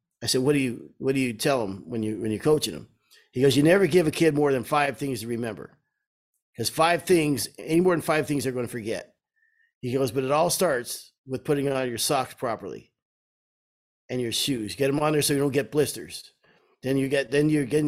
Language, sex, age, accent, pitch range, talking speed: English, male, 50-69, American, 120-150 Hz, 235 wpm